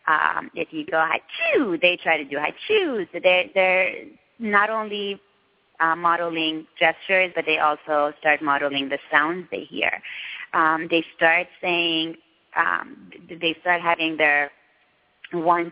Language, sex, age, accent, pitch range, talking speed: English, female, 20-39, American, 145-180 Hz, 150 wpm